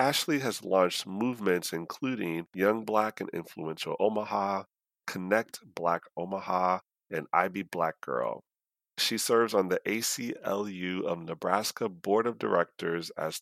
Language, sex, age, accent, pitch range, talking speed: English, male, 40-59, American, 90-115 Hz, 125 wpm